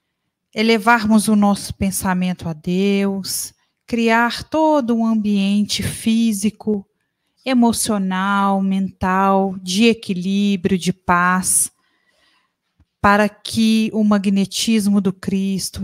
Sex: female